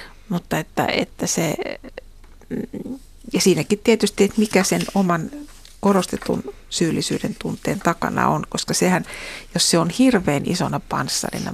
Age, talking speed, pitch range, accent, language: 60-79, 125 wpm, 180-230 Hz, native, Finnish